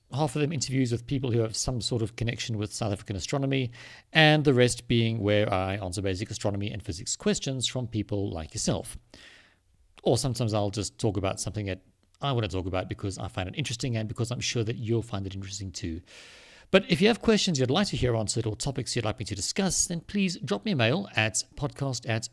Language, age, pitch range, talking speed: English, 50-69, 100-135 Hz, 230 wpm